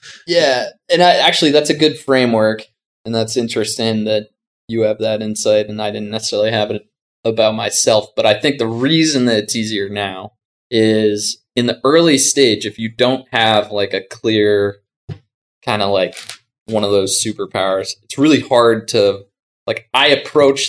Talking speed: 170 wpm